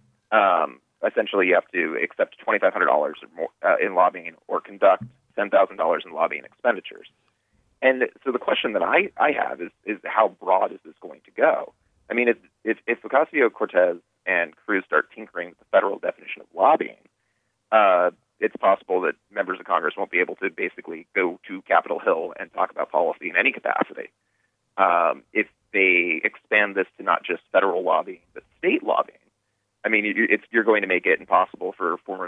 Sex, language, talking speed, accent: male, English, 180 wpm, American